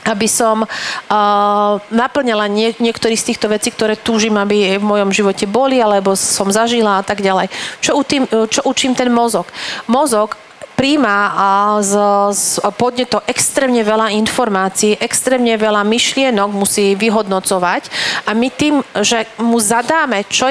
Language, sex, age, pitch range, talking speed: Slovak, female, 40-59, 210-240 Hz, 140 wpm